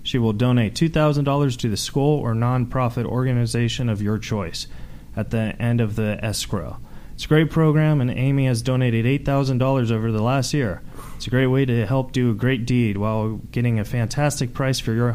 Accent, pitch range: American, 120-150 Hz